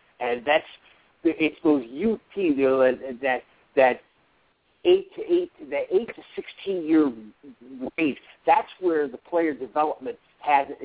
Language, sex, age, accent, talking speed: English, male, 60-79, American, 140 wpm